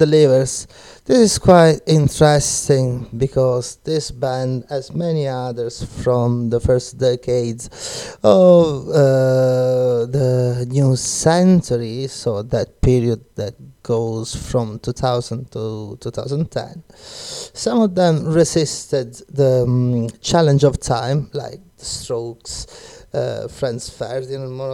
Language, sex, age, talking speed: Italian, male, 30-49, 105 wpm